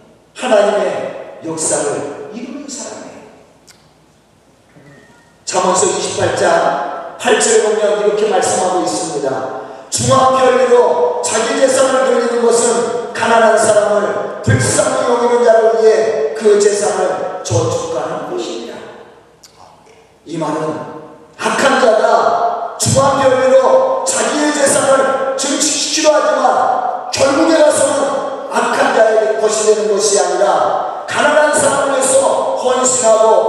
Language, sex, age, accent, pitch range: Korean, male, 40-59, native, 210-285 Hz